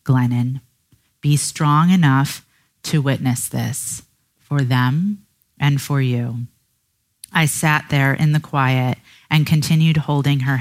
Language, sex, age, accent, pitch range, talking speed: English, female, 30-49, American, 130-155 Hz, 125 wpm